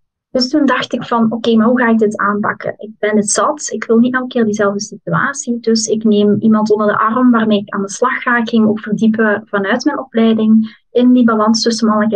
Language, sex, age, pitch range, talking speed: Dutch, female, 20-39, 220-255 Hz, 240 wpm